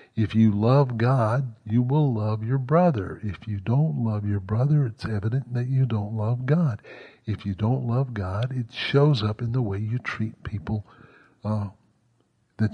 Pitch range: 110-130 Hz